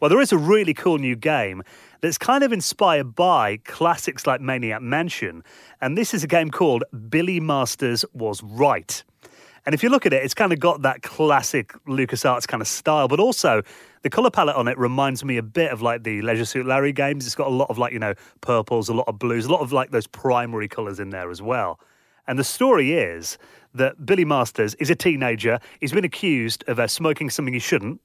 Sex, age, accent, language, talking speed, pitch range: male, 30-49, British, English, 220 wpm, 115-165 Hz